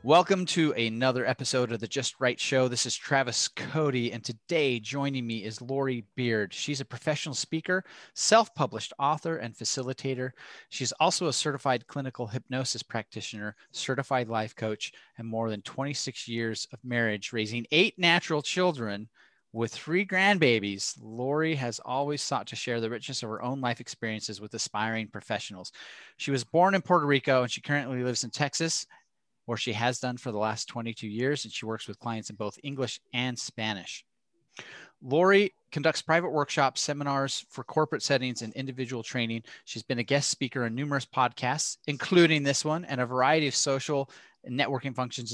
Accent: American